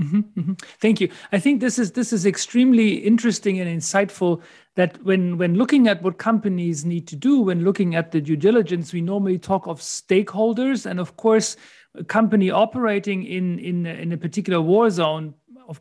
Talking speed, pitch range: 180 wpm, 170-205 Hz